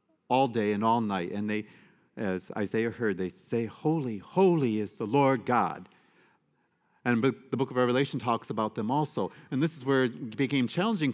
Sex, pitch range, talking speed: male, 110-145 Hz, 185 wpm